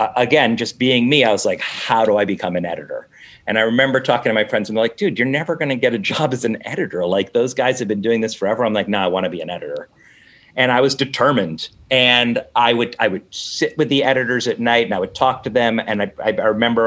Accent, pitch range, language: American, 110-145 Hz, English